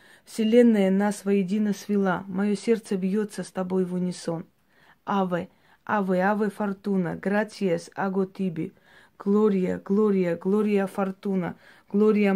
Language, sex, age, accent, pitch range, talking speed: Russian, female, 20-39, native, 185-210 Hz, 110 wpm